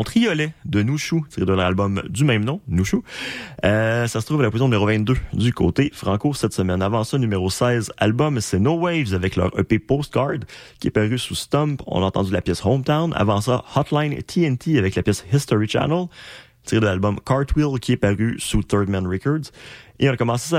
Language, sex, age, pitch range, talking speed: French, male, 30-49, 100-135 Hz, 210 wpm